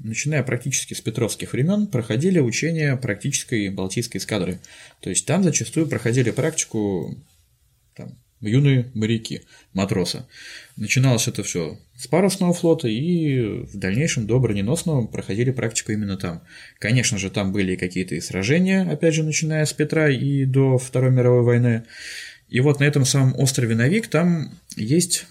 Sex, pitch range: male, 110-150 Hz